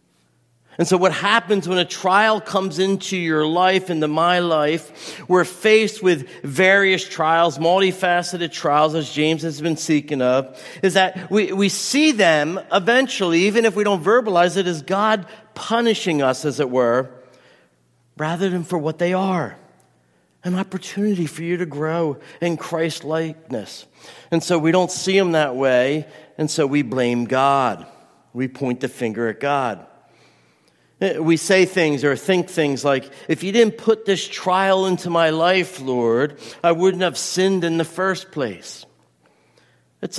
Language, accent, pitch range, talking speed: English, American, 155-190 Hz, 160 wpm